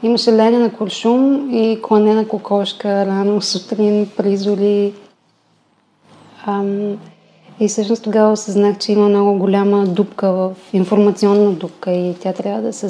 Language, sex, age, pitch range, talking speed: Bulgarian, female, 30-49, 195-220 Hz, 125 wpm